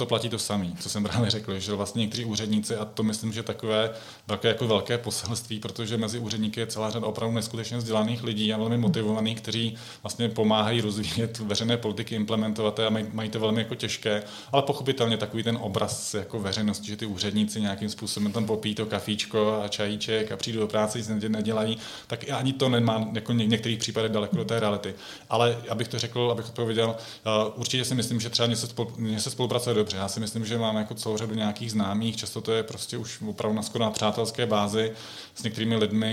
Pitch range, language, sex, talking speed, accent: 105-115 Hz, Czech, male, 195 wpm, native